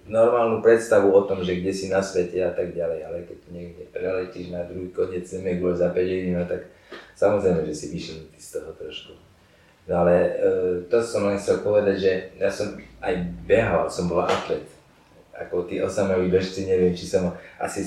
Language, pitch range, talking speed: Slovak, 90-115 Hz, 180 wpm